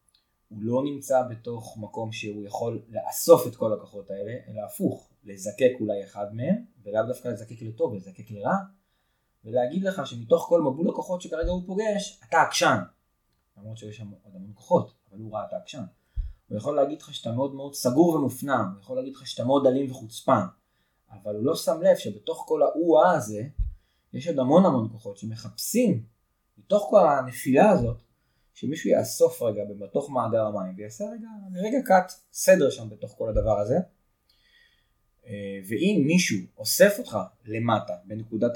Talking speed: 155 wpm